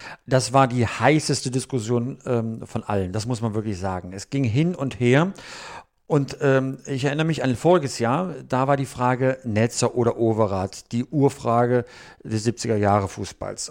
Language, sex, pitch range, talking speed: German, male, 115-140 Hz, 165 wpm